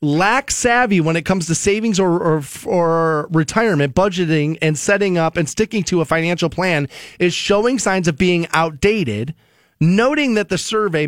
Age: 30-49